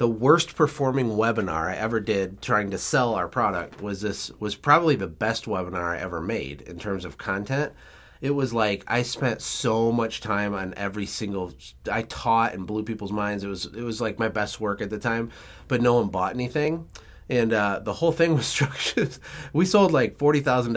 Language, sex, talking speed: English, male, 210 wpm